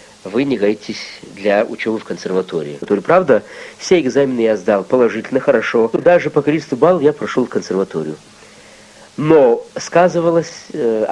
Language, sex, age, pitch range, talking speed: Russian, male, 50-69, 115-165 Hz, 135 wpm